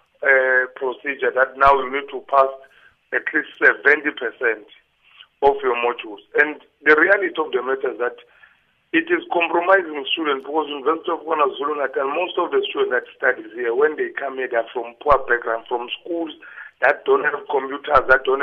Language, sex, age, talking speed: English, male, 50-69, 175 wpm